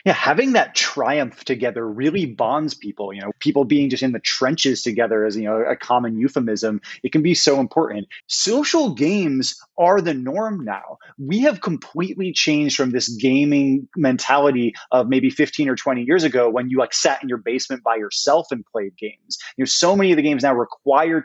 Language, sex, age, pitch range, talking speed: English, male, 20-39, 130-175 Hz, 200 wpm